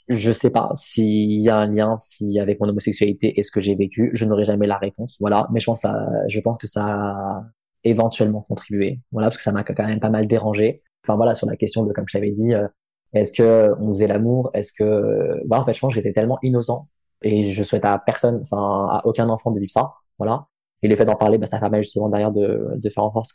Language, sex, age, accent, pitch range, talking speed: French, male, 20-39, French, 105-115 Hz, 255 wpm